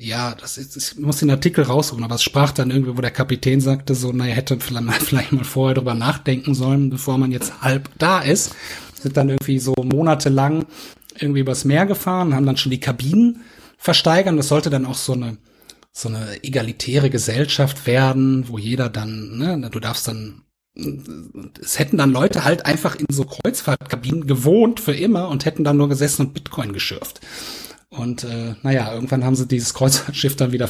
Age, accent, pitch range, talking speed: 30-49, German, 125-150 Hz, 185 wpm